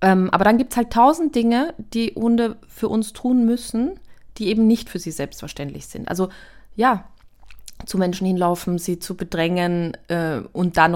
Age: 20-39